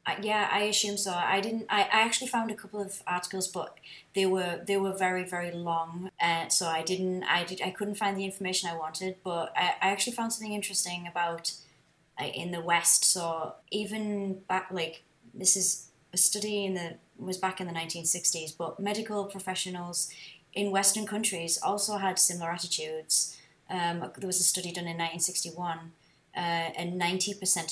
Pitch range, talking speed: 165-190 Hz, 180 wpm